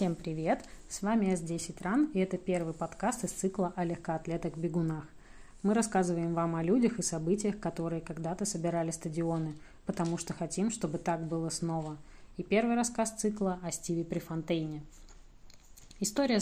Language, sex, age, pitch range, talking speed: Russian, female, 30-49, 170-200 Hz, 145 wpm